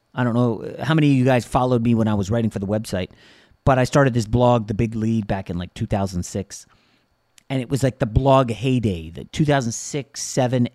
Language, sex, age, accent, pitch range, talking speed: English, male, 30-49, American, 110-145 Hz, 220 wpm